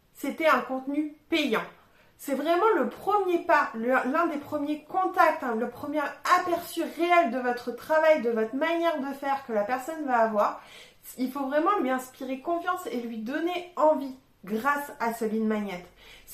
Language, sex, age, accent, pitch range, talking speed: French, female, 20-39, French, 240-310 Hz, 175 wpm